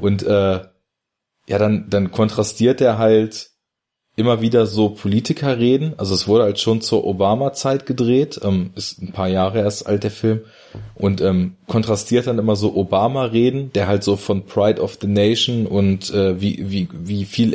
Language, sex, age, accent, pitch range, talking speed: German, male, 20-39, German, 100-115 Hz, 170 wpm